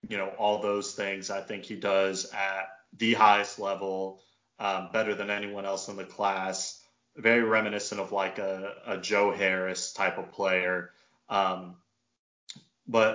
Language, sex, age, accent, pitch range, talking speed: English, male, 20-39, American, 95-105 Hz, 155 wpm